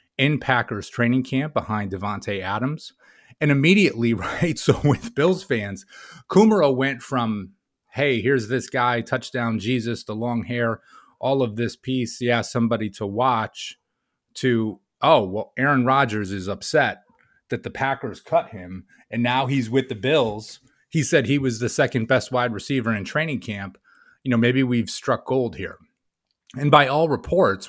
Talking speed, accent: 165 wpm, American